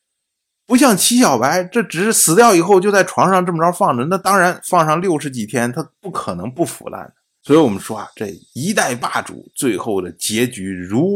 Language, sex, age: Chinese, male, 50-69